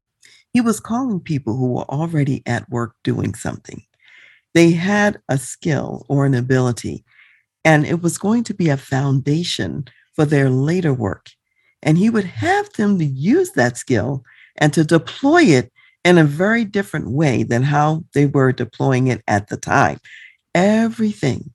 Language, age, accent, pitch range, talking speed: English, 50-69, American, 130-175 Hz, 160 wpm